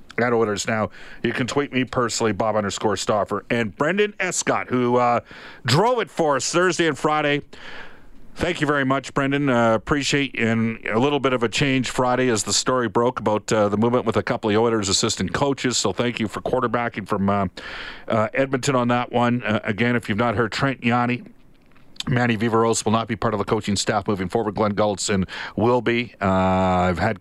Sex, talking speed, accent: male, 205 wpm, American